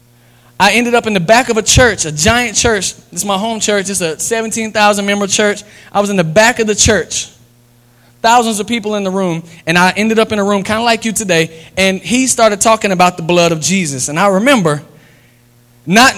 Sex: male